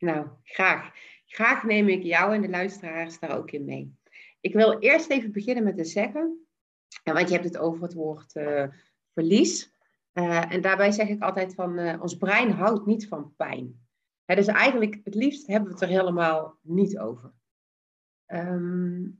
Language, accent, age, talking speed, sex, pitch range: Dutch, Dutch, 40-59, 180 wpm, female, 160-195 Hz